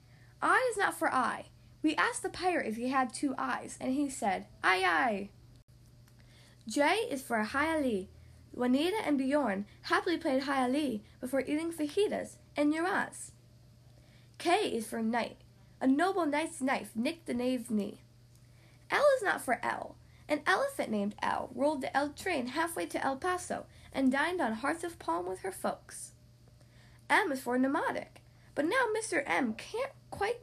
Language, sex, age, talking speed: English, female, 10-29, 160 wpm